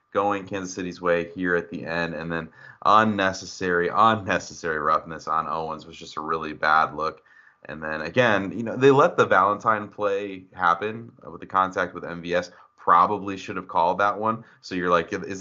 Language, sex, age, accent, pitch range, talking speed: English, male, 30-49, American, 85-100 Hz, 185 wpm